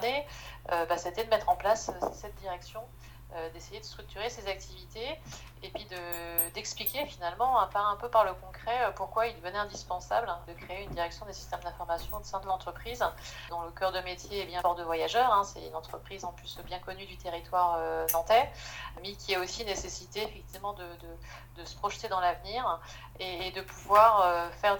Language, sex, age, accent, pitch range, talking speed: French, female, 30-49, French, 170-200 Hz, 185 wpm